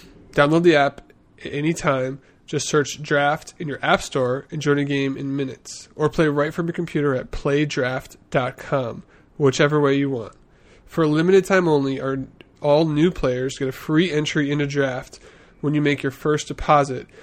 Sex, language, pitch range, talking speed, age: male, English, 135-155 Hz, 180 wpm, 20-39